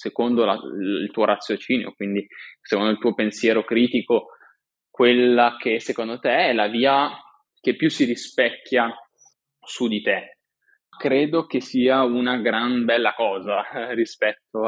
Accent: native